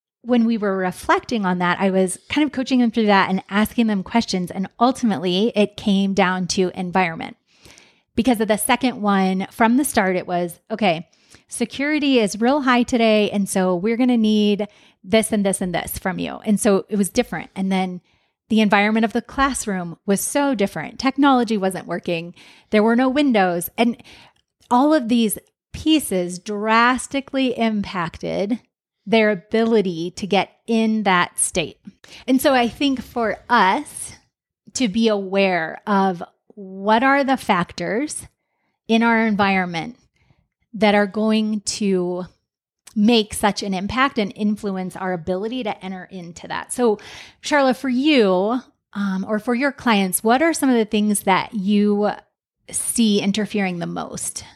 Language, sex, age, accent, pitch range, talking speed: English, female, 30-49, American, 190-235 Hz, 160 wpm